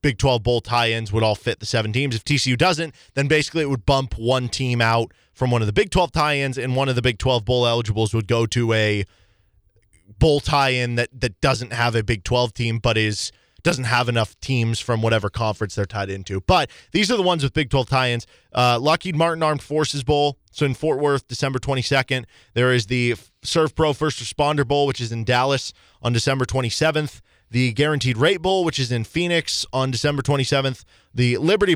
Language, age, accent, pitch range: English, 20-39, American, 110-140 Hz